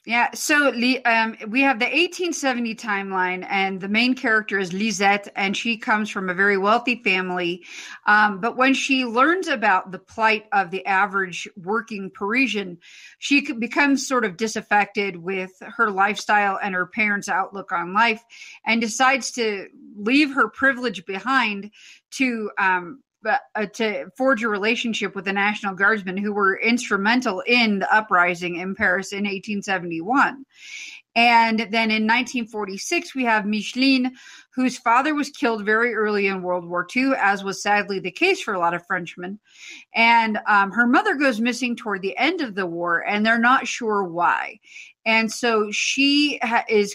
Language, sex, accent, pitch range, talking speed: English, female, American, 195-245 Hz, 160 wpm